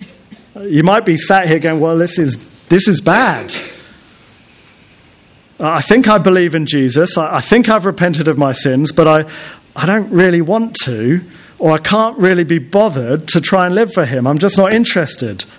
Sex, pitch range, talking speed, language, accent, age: male, 130-185 Hz, 185 wpm, English, British, 40-59